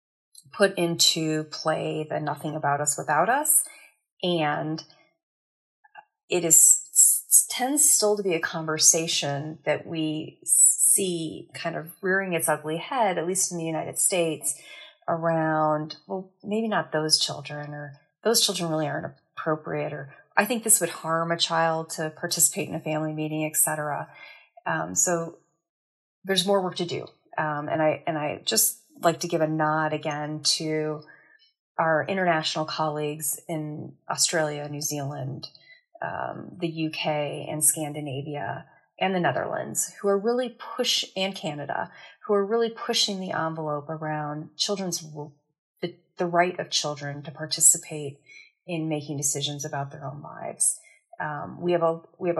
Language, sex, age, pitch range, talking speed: English, female, 30-49, 155-185 Hz, 150 wpm